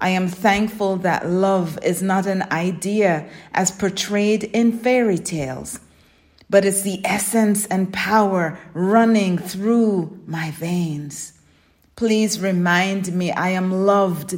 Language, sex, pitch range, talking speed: English, female, 160-205 Hz, 125 wpm